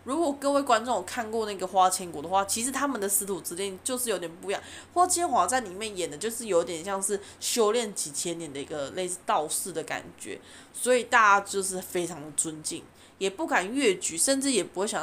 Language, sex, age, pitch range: Chinese, female, 20-39, 175-250 Hz